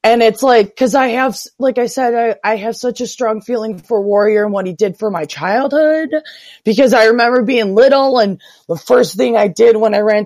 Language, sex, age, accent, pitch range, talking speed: English, female, 20-39, American, 175-245 Hz, 230 wpm